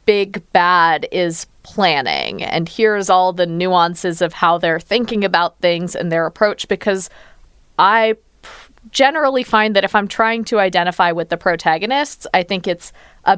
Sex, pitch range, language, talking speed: female, 175-225 Hz, English, 155 wpm